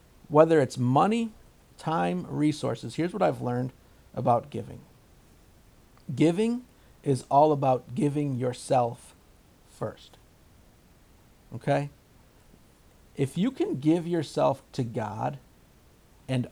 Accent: American